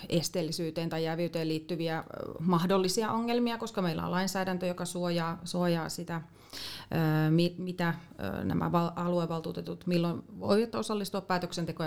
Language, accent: Finnish, native